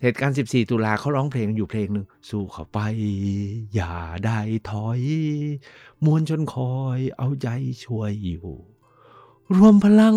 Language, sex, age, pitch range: Thai, male, 60-79, 105-145 Hz